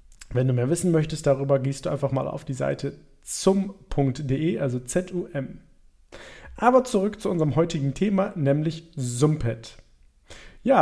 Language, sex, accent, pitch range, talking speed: German, male, German, 140-195 Hz, 140 wpm